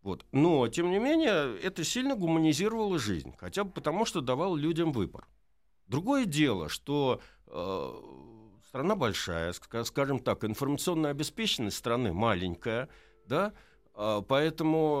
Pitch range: 100-160 Hz